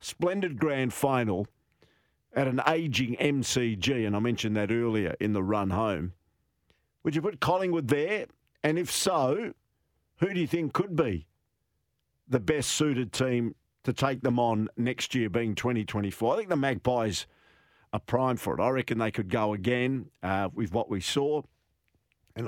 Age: 50-69